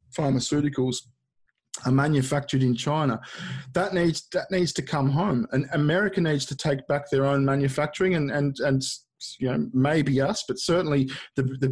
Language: English